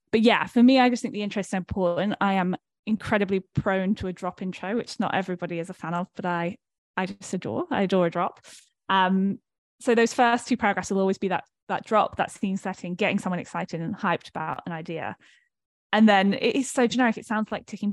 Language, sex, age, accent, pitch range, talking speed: English, female, 10-29, British, 175-210 Hz, 230 wpm